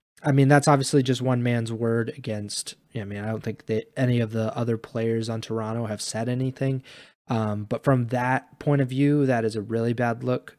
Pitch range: 110-130 Hz